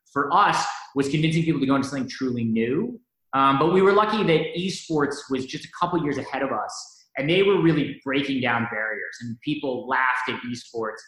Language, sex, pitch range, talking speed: English, male, 120-150 Hz, 205 wpm